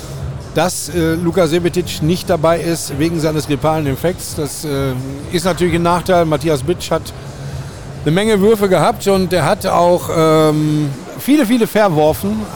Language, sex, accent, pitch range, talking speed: German, male, German, 115-140 Hz, 155 wpm